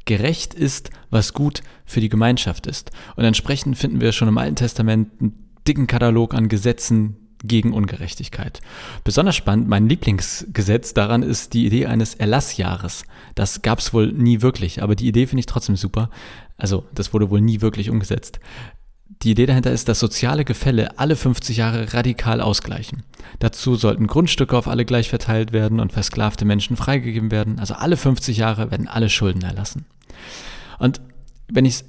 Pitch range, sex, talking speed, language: 110-125 Hz, male, 170 wpm, German